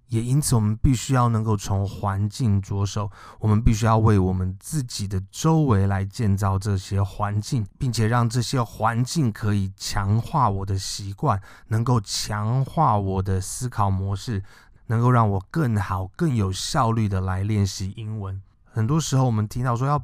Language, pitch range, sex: Chinese, 100-125 Hz, male